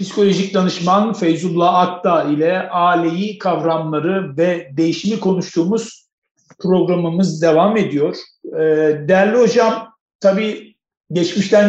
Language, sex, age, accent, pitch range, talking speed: Turkish, male, 50-69, native, 155-190 Hz, 85 wpm